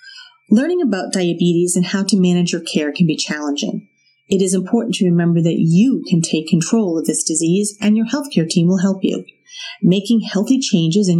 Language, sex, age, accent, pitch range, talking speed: English, female, 40-59, American, 170-225 Hz, 195 wpm